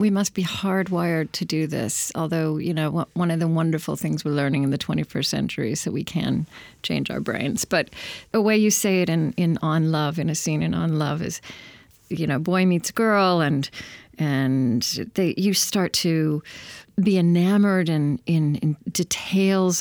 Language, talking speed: English, 190 wpm